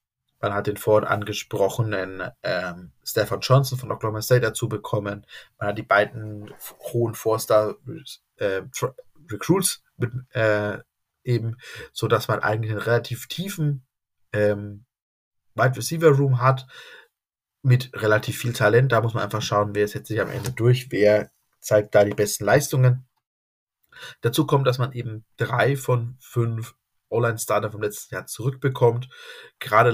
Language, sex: German, male